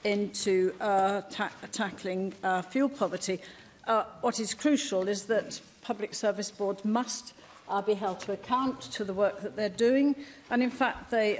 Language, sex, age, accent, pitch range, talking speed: English, female, 50-69, British, 195-225 Hz, 170 wpm